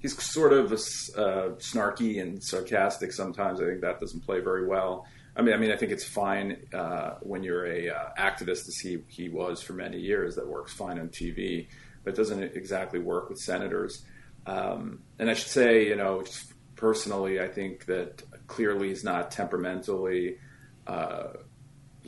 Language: English